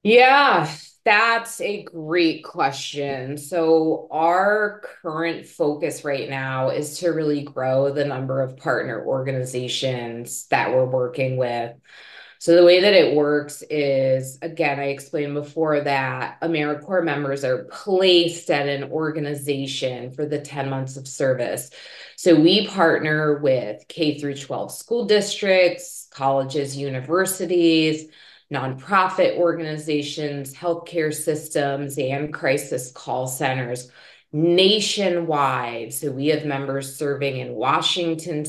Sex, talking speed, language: female, 120 wpm, English